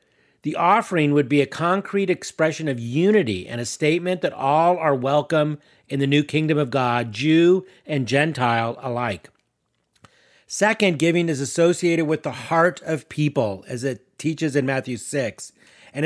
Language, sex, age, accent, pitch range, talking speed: English, male, 40-59, American, 135-180 Hz, 155 wpm